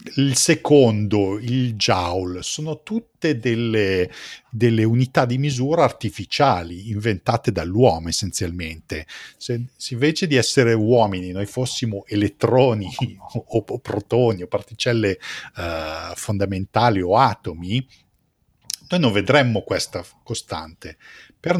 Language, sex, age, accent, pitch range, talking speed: Italian, male, 50-69, native, 95-130 Hz, 110 wpm